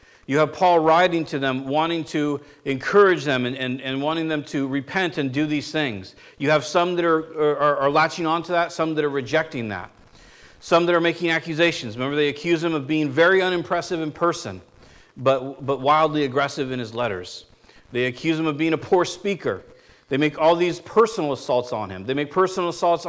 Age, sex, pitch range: 50-69, male, 140-180 Hz